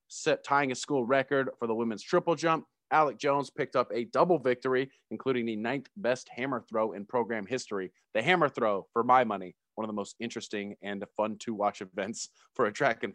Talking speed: 210 wpm